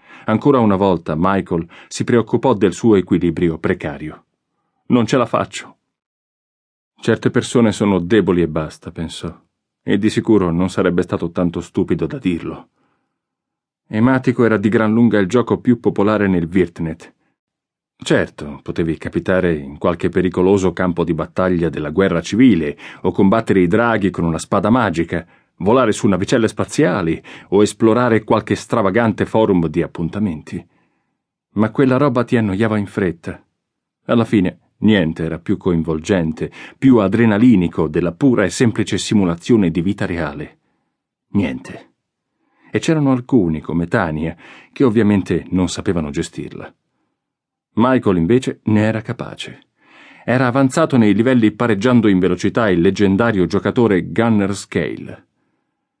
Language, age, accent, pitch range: Italian, 40-59, native, 85-115 Hz